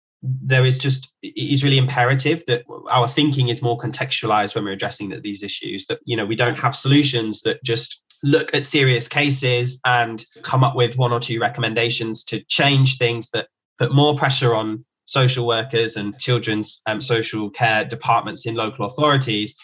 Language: English